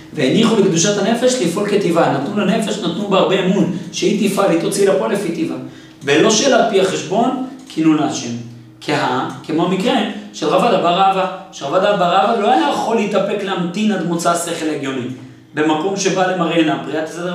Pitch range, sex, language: 165-210 Hz, male, Hebrew